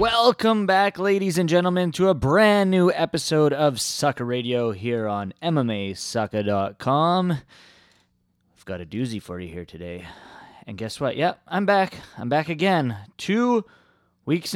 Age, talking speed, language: 20-39, 150 wpm, English